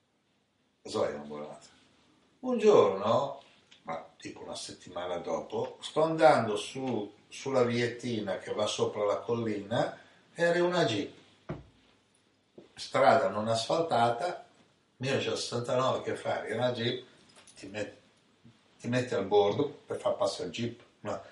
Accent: native